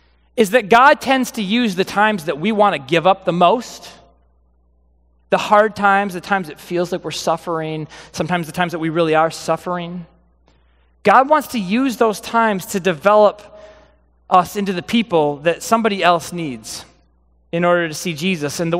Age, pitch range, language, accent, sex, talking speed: 30-49, 165-225 Hz, English, American, male, 180 wpm